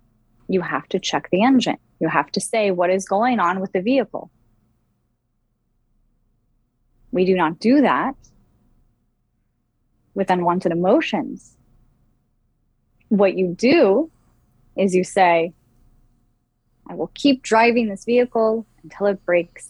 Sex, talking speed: female, 120 wpm